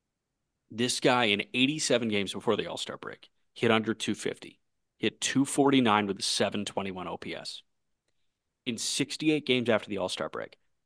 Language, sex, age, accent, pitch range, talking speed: English, male, 30-49, American, 105-125 Hz, 140 wpm